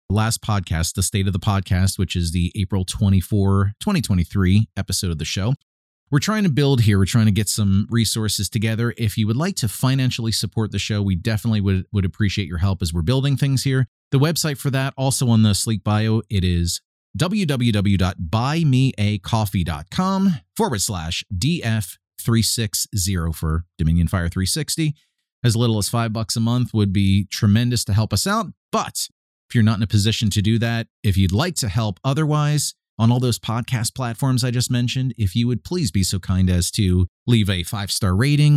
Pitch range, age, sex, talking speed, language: 95-120 Hz, 30-49, male, 190 wpm, English